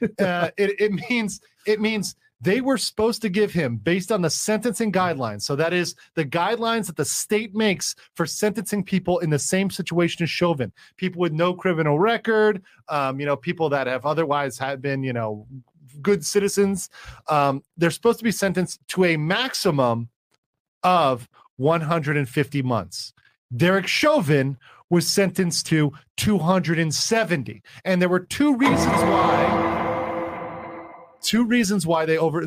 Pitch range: 145-200 Hz